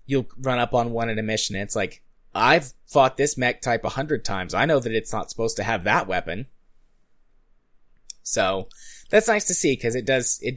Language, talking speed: English, 215 wpm